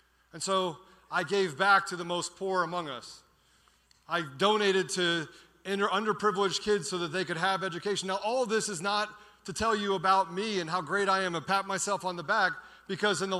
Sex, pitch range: male, 150-190 Hz